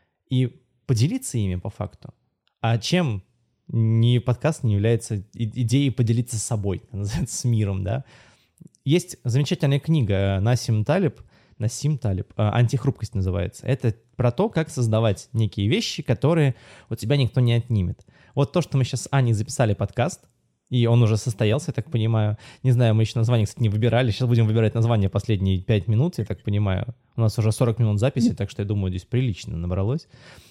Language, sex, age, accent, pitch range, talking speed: Russian, male, 20-39, native, 110-130 Hz, 175 wpm